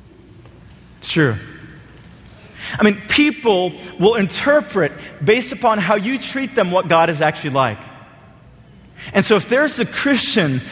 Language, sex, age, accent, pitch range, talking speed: English, male, 30-49, American, 140-200 Hz, 130 wpm